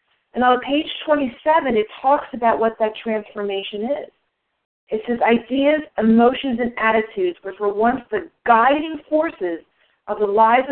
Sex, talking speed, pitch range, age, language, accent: female, 145 wpm, 215-275 Hz, 40-59, English, American